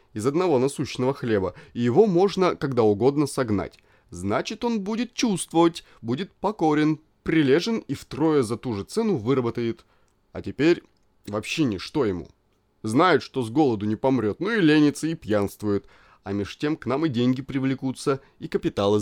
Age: 20-39